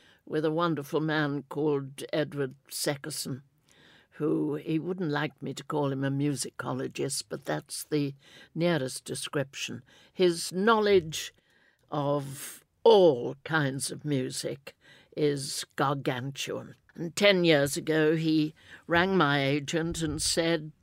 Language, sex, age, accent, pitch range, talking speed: English, female, 60-79, British, 140-170 Hz, 120 wpm